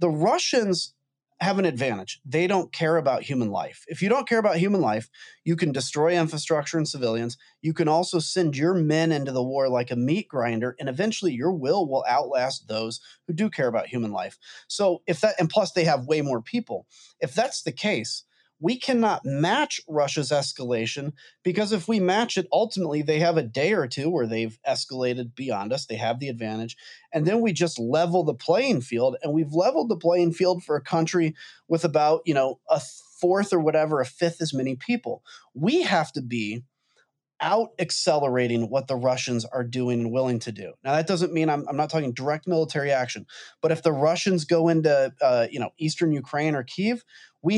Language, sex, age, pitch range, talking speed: English, male, 30-49, 135-180 Hz, 200 wpm